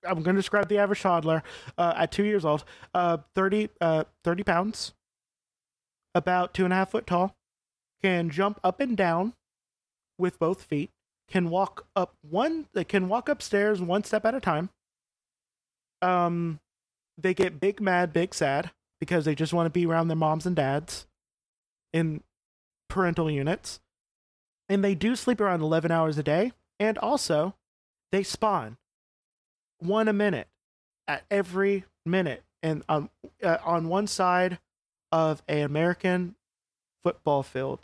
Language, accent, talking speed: English, American, 155 wpm